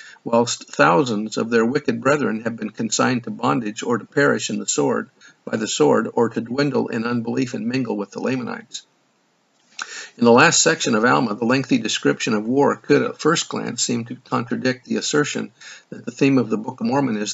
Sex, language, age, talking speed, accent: male, English, 50-69, 205 wpm, American